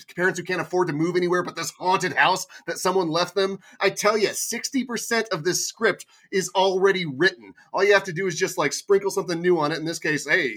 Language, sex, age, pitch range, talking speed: English, male, 30-49, 155-205 Hz, 240 wpm